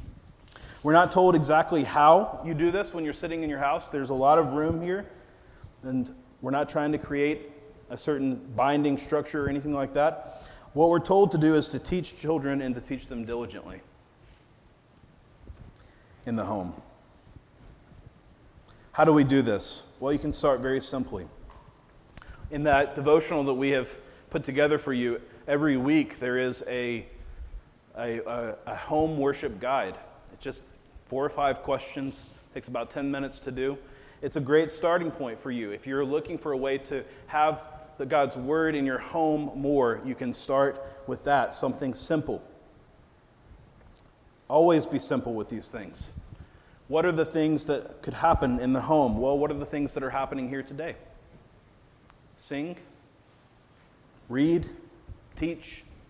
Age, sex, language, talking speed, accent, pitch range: 30-49, male, English, 160 wpm, American, 130-155 Hz